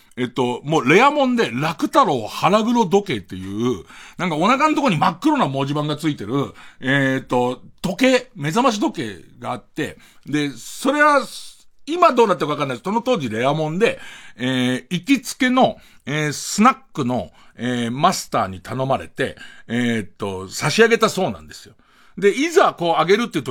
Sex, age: male, 50-69